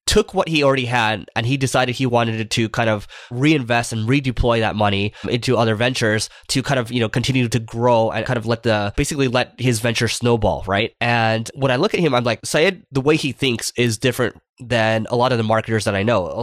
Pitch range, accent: 110-125 Hz, American